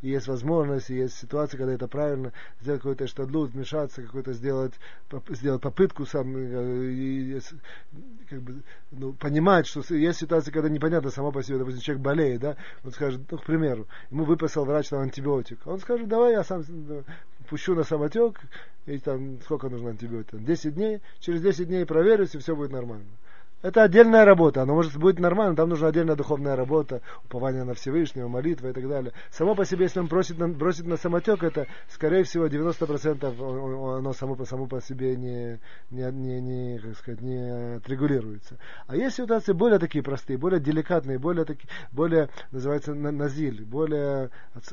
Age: 30-49